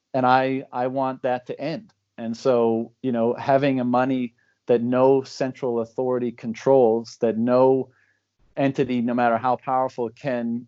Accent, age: American, 30-49